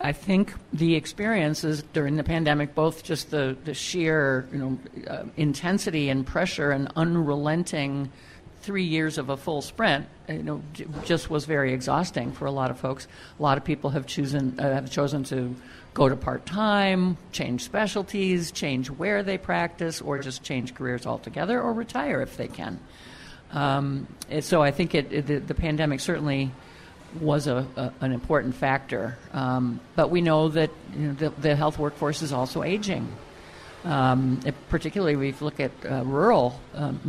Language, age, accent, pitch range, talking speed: English, 50-69, American, 135-165 Hz, 170 wpm